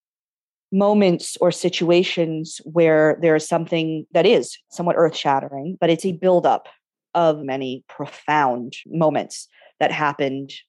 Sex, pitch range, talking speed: female, 145-165 Hz, 125 wpm